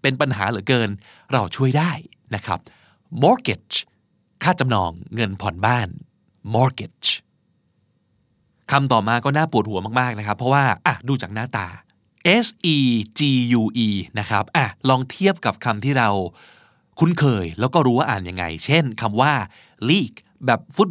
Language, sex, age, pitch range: Thai, male, 20-39, 110-165 Hz